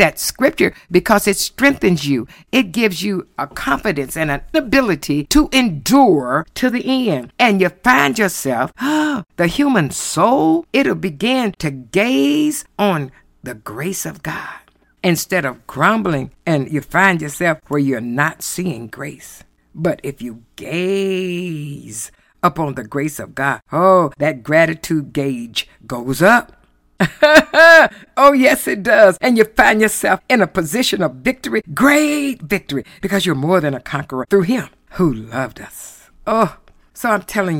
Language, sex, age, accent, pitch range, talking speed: English, female, 60-79, American, 145-210 Hz, 145 wpm